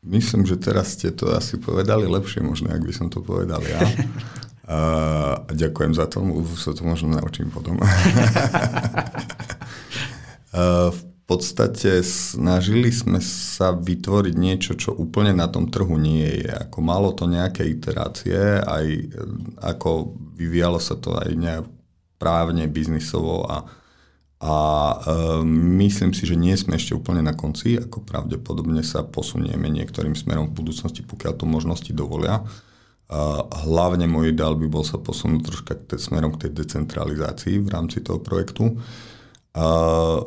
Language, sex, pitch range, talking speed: Czech, male, 80-100 Hz, 145 wpm